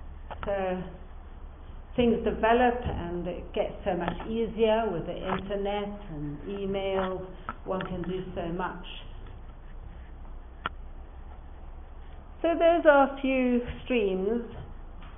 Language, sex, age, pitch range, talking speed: English, female, 60-79, 170-235 Hz, 100 wpm